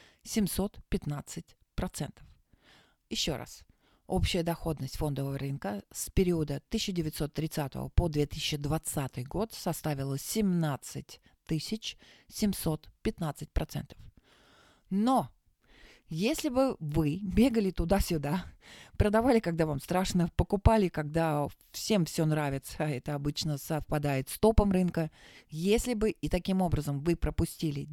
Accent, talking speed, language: native, 90 wpm, Russian